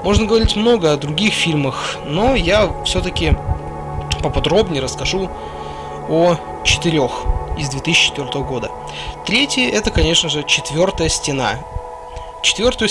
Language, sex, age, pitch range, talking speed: Russian, male, 20-39, 125-170 Hz, 105 wpm